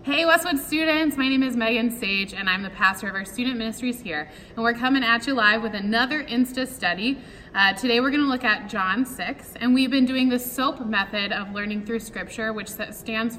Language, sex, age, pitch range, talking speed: English, female, 20-39, 205-250 Hz, 220 wpm